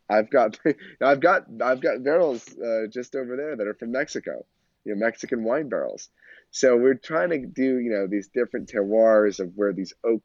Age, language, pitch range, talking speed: 30-49, English, 95-125 Hz, 200 wpm